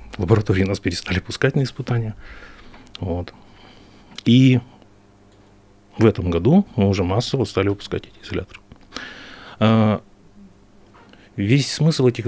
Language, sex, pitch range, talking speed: Russian, male, 95-115 Hz, 110 wpm